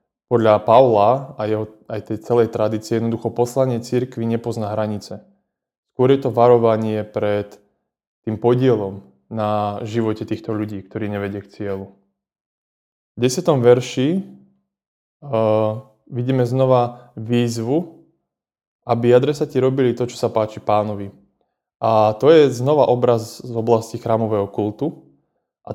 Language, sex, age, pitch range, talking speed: Slovak, male, 20-39, 105-125 Hz, 125 wpm